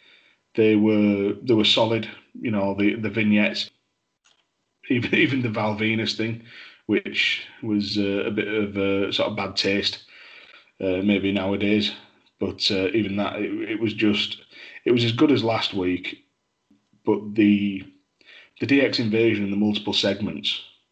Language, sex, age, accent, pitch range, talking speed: English, male, 30-49, British, 100-115 Hz, 150 wpm